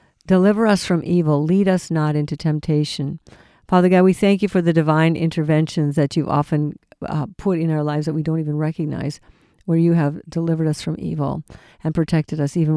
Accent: American